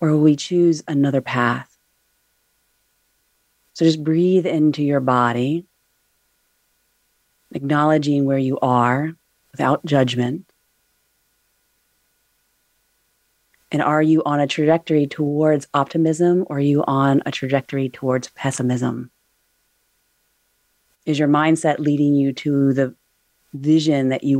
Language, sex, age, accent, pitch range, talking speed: English, female, 30-49, American, 135-160 Hz, 110 wpm